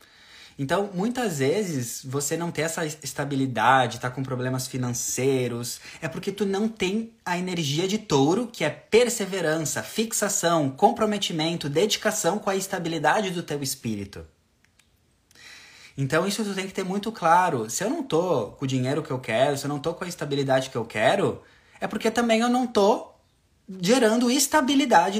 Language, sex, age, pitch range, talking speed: Portuguese, male, 20-39, 120-175 Hz, 165 wpm